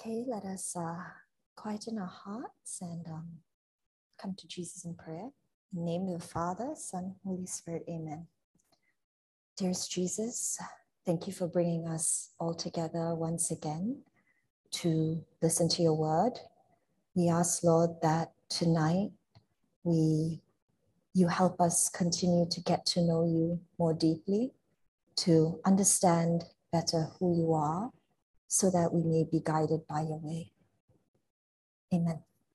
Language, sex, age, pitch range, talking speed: English, female, 30-49, 165-200 Hz, 135 wpm